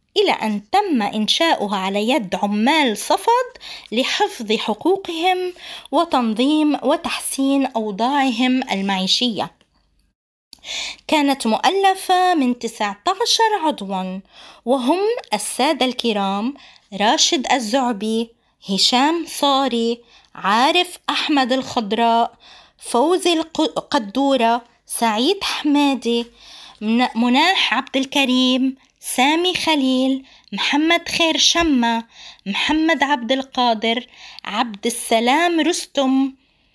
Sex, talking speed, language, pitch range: female, 75 wpm, Arabic, 235-315 Hz